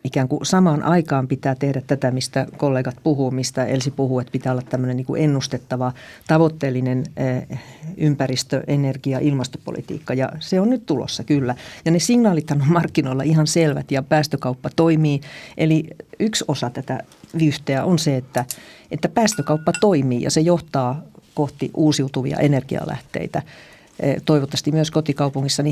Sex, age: female, 50-69